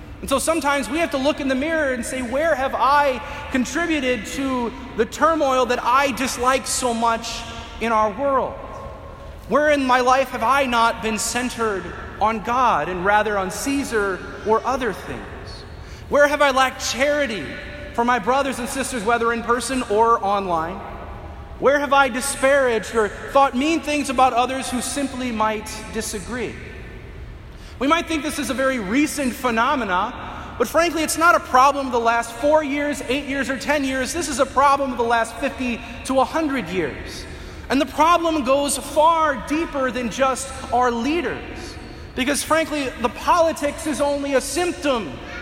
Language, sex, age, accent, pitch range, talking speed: English, male, 30-49, American, 230-285 Hz, 170 wpm